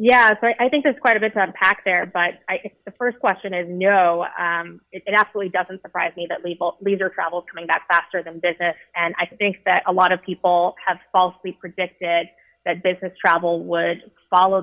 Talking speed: 200 wpm